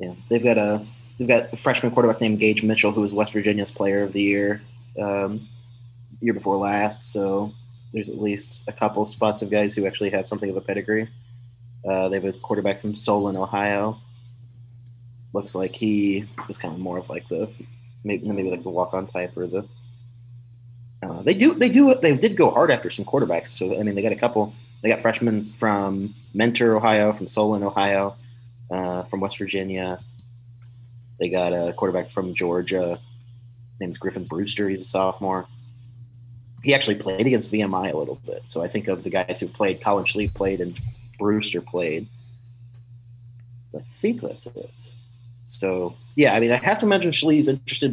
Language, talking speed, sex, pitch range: English, 185 wpm, male, 100-120 Hz